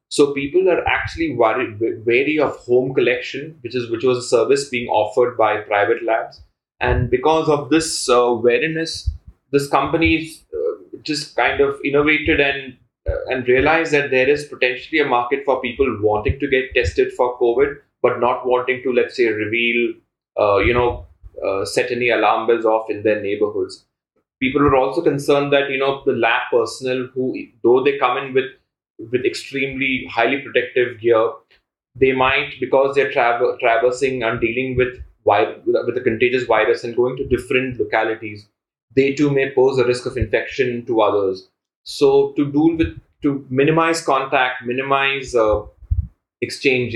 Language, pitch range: English, 120-145 Hz